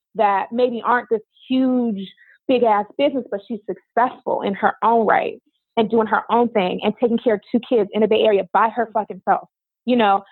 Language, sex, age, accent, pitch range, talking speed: English, female, 20-39, American, 205-245 Hz, 210 wpm